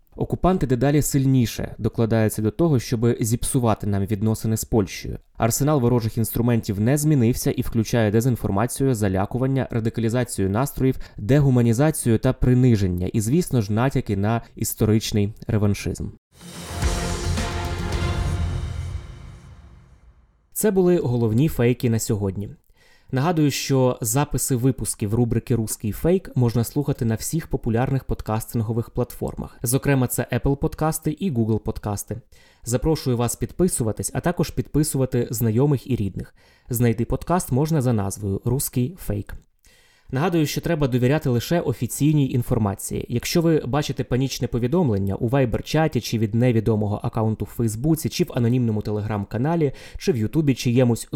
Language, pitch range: Ukrainian, 110-135 Hz